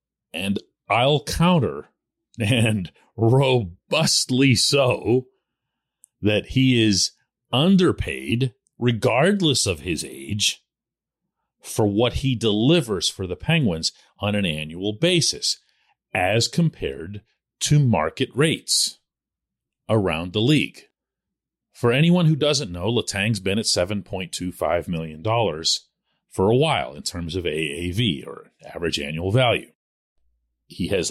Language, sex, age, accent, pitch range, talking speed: English, male, 40-59, American, 95-140 Hz, 110 wpm